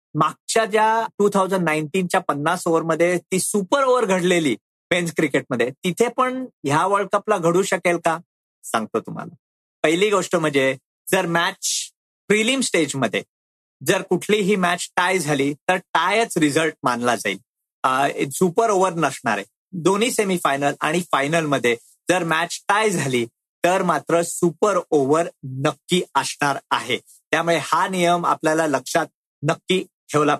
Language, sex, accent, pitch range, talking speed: Marathi, male, native, 160-195 Hz, 130 wpm